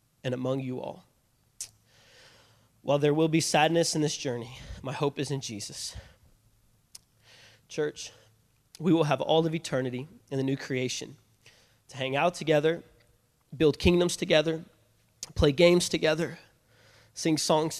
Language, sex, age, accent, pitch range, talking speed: English, male, 20-39, American, 120-155 Hz, 135 wpm